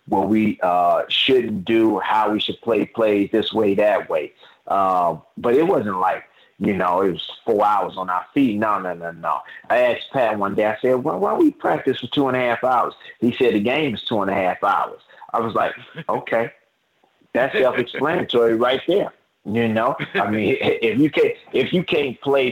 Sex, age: male, 30-49